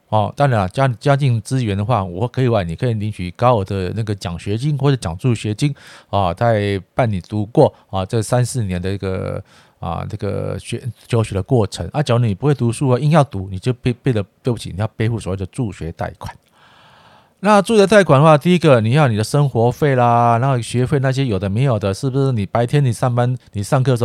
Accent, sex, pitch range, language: native, male, 100-130 Hz, Chinese